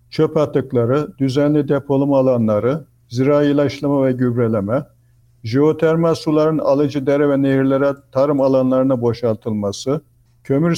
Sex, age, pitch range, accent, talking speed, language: male, 60-79, 125-150 Hz, native, 105 wpm, Turkish